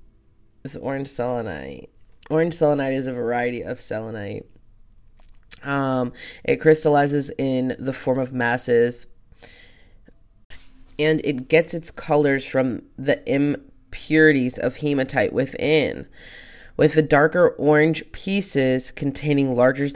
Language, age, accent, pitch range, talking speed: English, 20-39, American, 120-145 Hz, 110 wpm